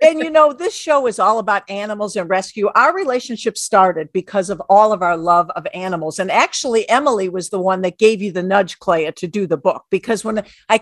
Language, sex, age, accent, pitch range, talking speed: English, female, 50-69, American, 180-225 Hz, 225 wpm